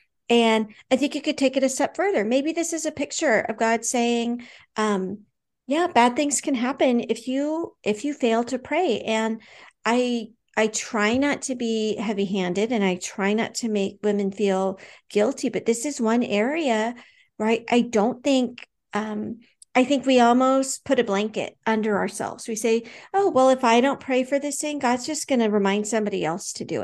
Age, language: 50-69, English